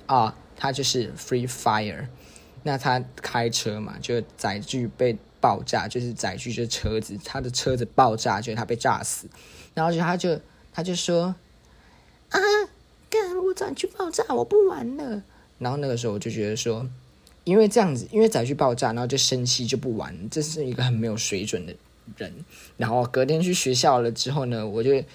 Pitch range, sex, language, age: 110-140 Hz, male, Chinese, 20-39